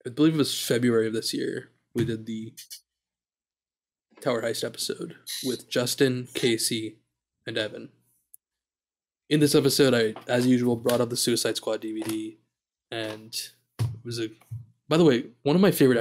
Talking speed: 155 wpm